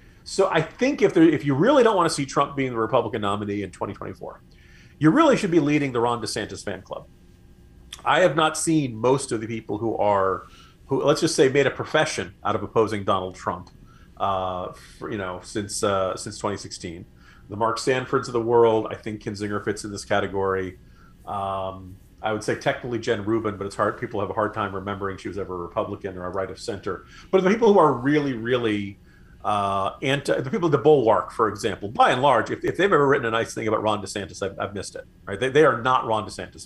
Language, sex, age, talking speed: English, male, 40-59, 230 wpm